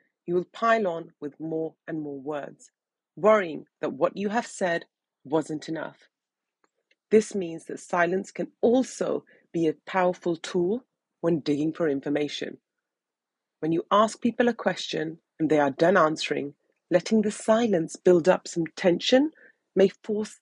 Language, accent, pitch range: English, British, 165-215 Hz